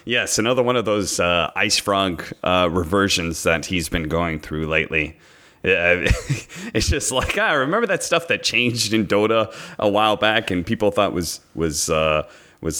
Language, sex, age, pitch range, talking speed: English, male, 30-49, 80-105 Hz, 180 wpm